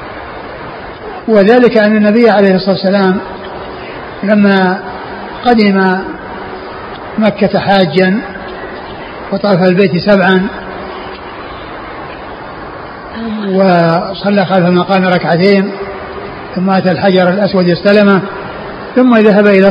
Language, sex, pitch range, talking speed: Arabic, male, 195-230 Hz, 75 wpm